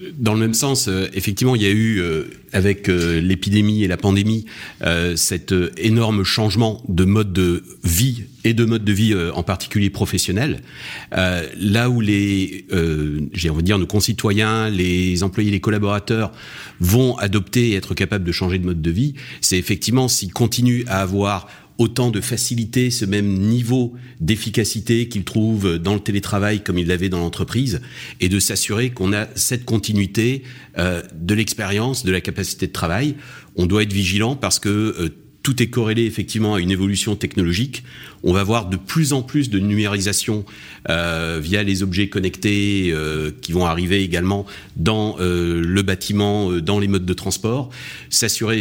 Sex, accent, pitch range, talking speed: male, French, 95-115 Hz, 170 wpm